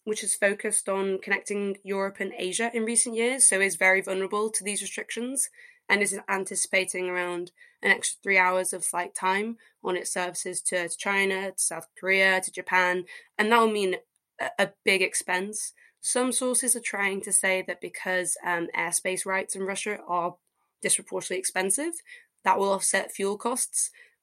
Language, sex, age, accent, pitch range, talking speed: English, female, 20-39, British, 180-210 Hz, 165 wpm